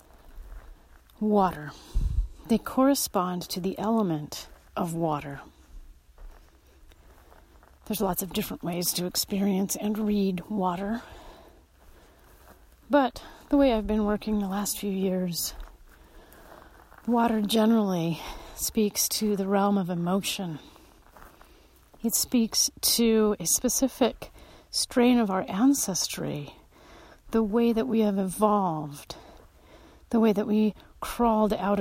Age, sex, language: 40-59, female, English